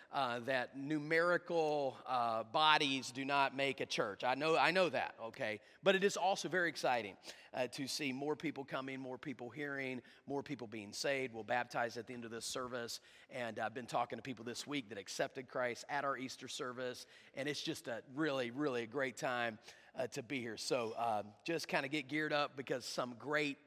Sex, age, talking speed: male, 30-49, 210 wpm